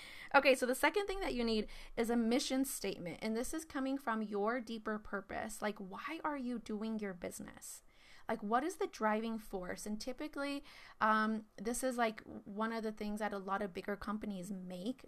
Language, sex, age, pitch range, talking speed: English, female, 20-39, 210-260 Hz, 200 wpm